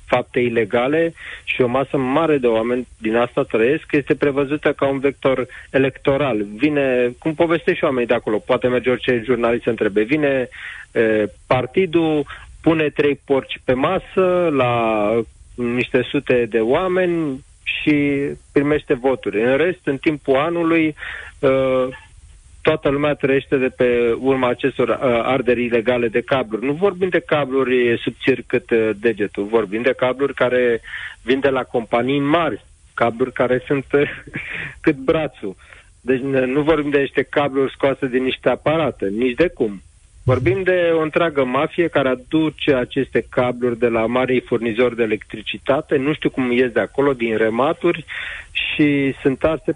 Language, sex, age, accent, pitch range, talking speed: Romanian, male, 30-49, native, 120-145 Hz, 145 wpm